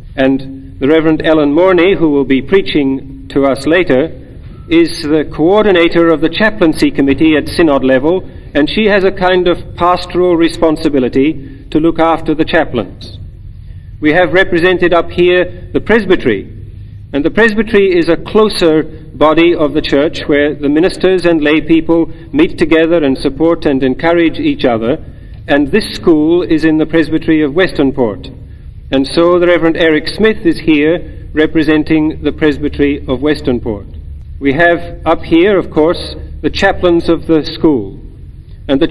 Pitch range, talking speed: 135-170 Hz, 155 wpm